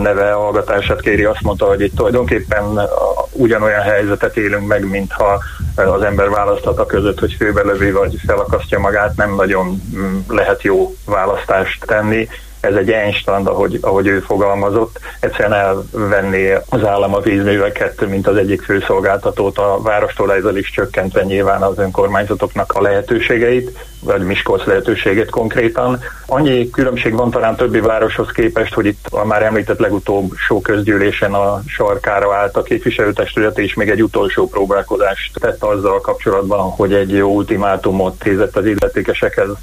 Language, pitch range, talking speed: Hungarian, 100-110 Hz, 145 wpm